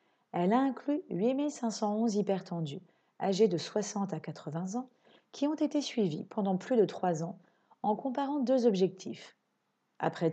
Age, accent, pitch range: 40-59, French, 175-235 Hz